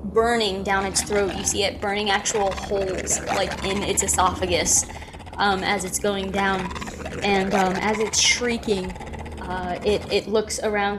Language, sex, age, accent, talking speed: English, female, 20-39, American, 160 wpm